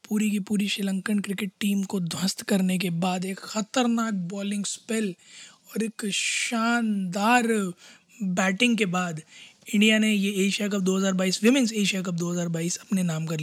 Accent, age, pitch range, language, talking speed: native, 20-39, 195-235 Hz, Hindi, 150 wpm